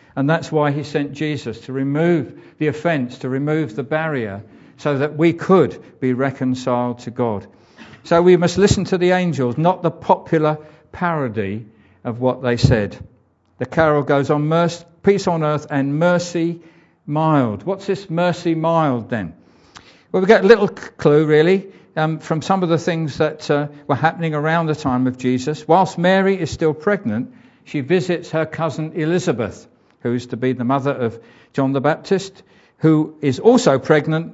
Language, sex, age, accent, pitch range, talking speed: English, male, 50-69, British, 130-165 Hz, 170 wpm